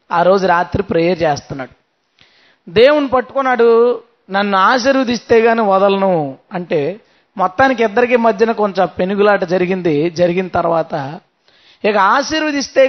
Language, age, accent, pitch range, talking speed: Telugu, 20-39, native, 205-270 Hz, 100 wpm